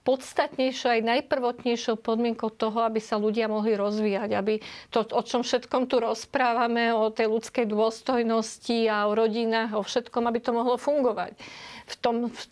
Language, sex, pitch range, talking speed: Slovak, female, 215-245 Hz, 155 wpm